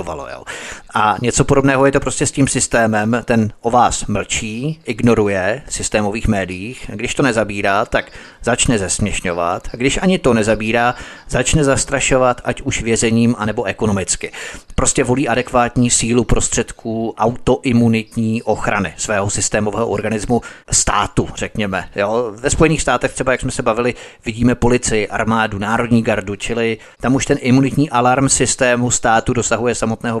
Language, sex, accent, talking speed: Czech, male, native, 135 wpm